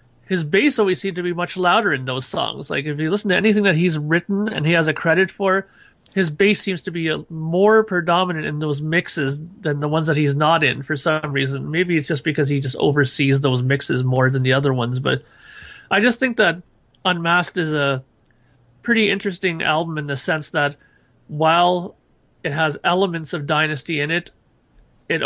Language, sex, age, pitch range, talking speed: English, male, 30-49, 135-170 Hz, 200 wpm